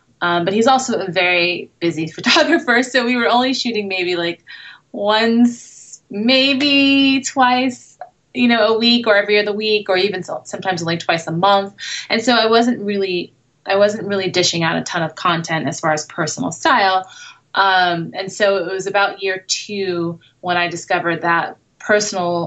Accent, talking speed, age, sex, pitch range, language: American, 175 wpm, 20-39, female, 175-210 Hz, English